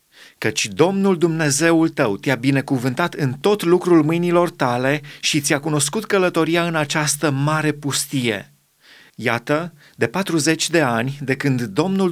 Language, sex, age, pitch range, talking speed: Romanian, male, 30-49, 135-160 Hz, 135 wpm